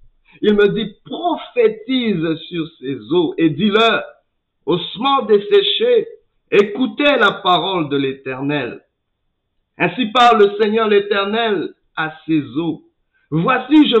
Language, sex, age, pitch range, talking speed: French, male, 50-69, 155-235 Hz, 125 wpm